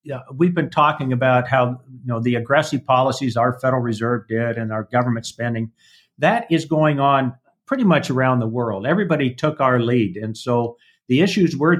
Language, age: English, 50-69